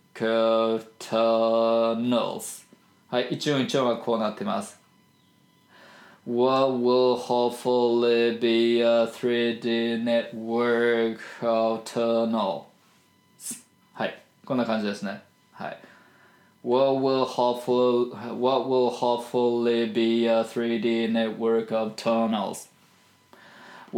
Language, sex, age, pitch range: Japanese, male, 20-39, 115-130 Hz